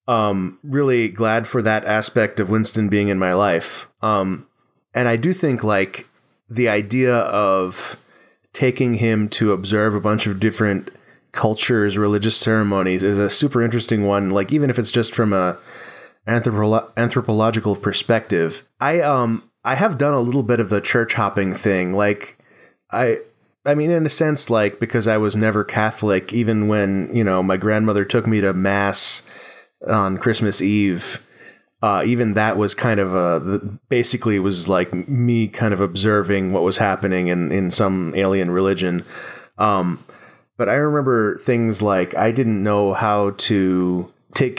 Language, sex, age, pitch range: English, male, 30-49, 100-115 Hz